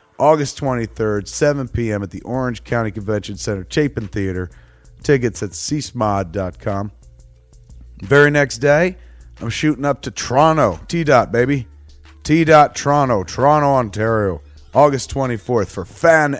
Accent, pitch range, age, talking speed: American, 95-130 Hz, 30-49, 120 wpm